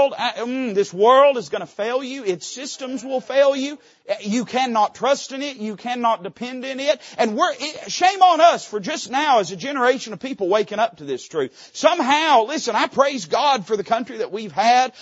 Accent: American